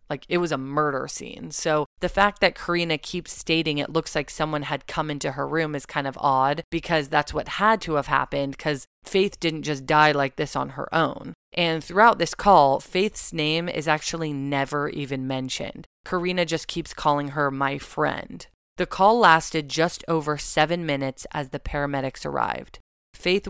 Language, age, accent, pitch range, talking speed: English, 20-39, American, 140-165 Hz, 185 wpm